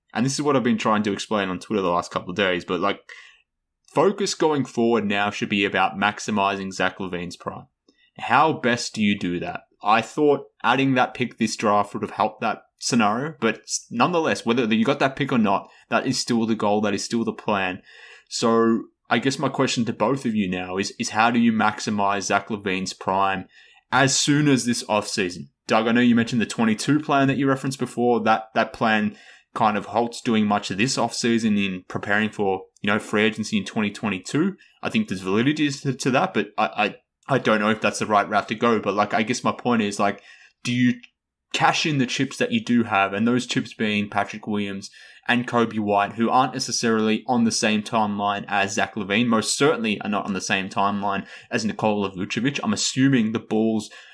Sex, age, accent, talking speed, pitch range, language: male, 20-39, Australian, 215 wpm, 100-125 Hz, English